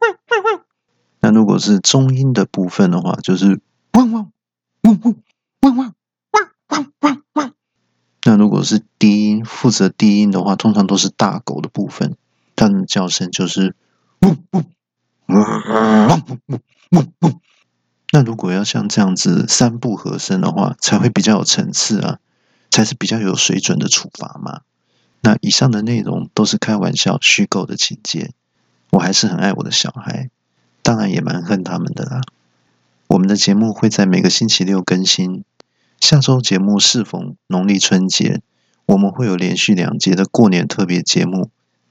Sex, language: male, Chinese